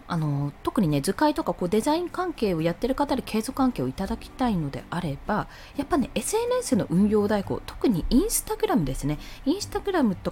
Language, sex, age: Japanese, female, 20-39